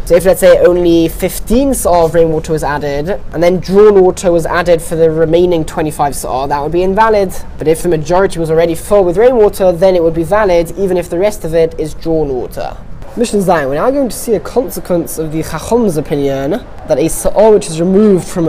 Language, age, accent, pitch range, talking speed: English, 10-29, British, 165-200 Hz, 220 wpm